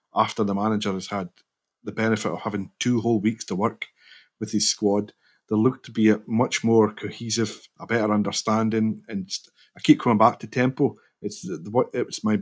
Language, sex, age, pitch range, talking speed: English, male, 30-49, 105-120 Hz, 205 wpm